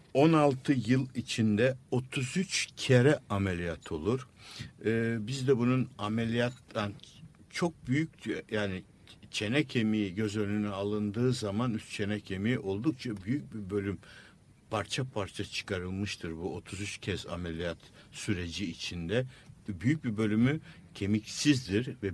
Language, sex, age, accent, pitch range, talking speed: Turkish, male, 60-79, native, 100-130 Hz, 110 wpm